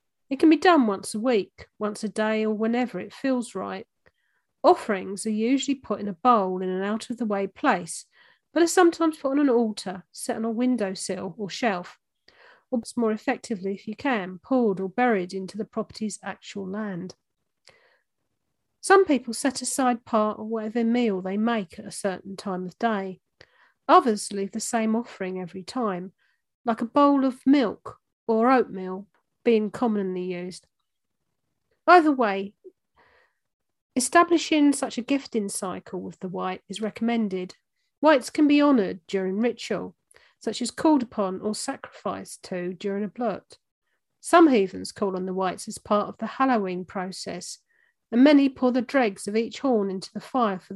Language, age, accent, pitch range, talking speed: English, 40-59, British, 195-260 Hz, 165 wpm